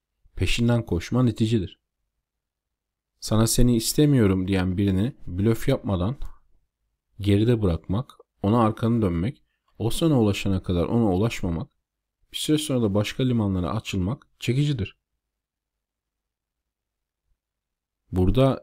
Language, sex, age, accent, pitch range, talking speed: Turkish, male, 40-59, native, 95-120 Hz, 95 wpm